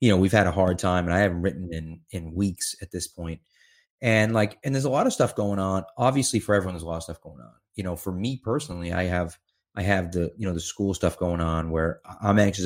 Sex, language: male, English